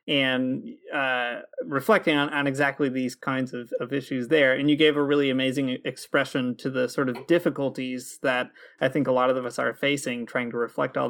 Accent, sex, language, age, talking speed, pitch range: American, male, English, 30-49, 200 wpm, 130-145 Hz